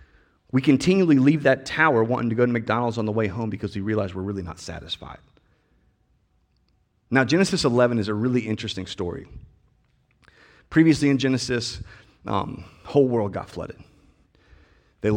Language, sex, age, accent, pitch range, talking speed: English, male, 30-49, American, 100-130 Hz, 150 wpm